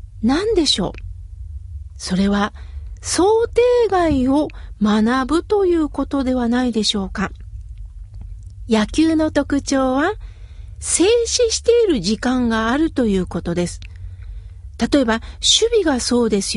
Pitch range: 195-310 Hz